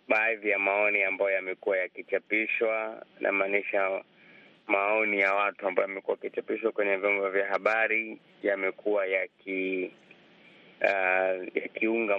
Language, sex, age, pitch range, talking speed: Swahili, male, 30-49, 95-110 Hz, 115 wpm